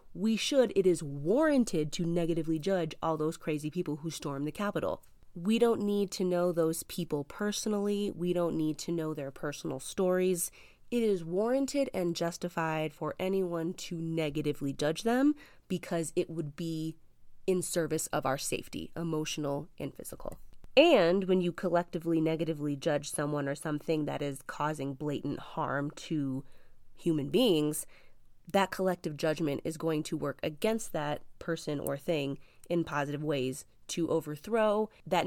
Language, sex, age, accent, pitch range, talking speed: English, female, 20-39, American, 150-180 Hz, 155 wpm